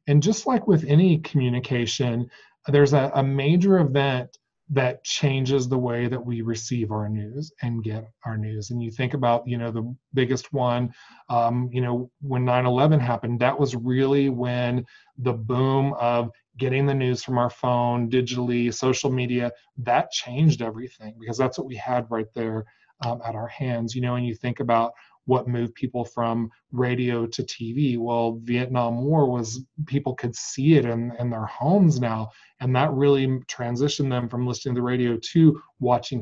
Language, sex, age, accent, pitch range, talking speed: English, male, 20-39, American, 120-135 Hz, 175 wpm